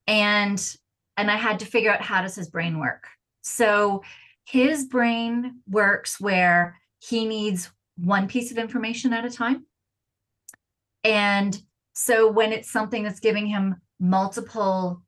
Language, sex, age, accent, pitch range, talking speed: English, female, 30-49, American, 180-225 Hz, 140 wpm